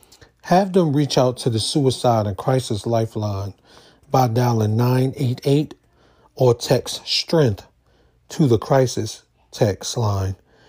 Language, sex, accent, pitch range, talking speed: English, male, American, 115-150 Hz, 120 wpm